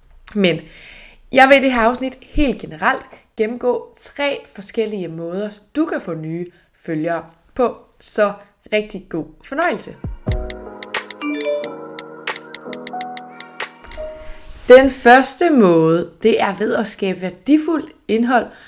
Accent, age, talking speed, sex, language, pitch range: native, 20-39, 105 wpm, female, Danish, 180-245 Hz